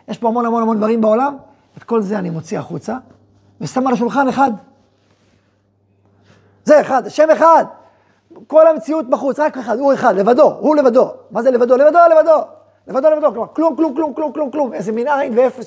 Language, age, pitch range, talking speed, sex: Hebrew, 30-49, 155-260 Hz, 185 wpm, male